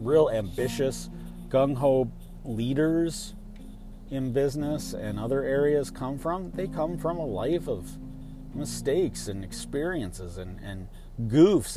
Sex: male